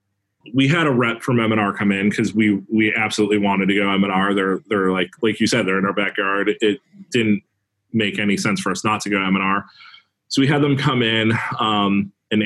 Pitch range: 100-110 Hz